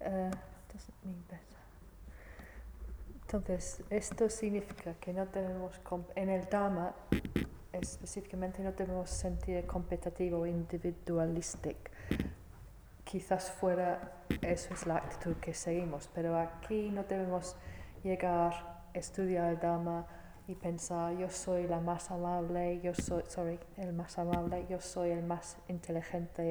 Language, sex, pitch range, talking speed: Italian, female, 170-190 Hz, 120 wpm